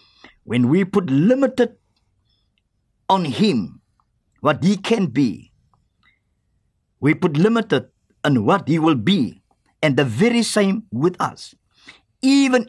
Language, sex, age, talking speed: English, male, 50-69, 120 wpm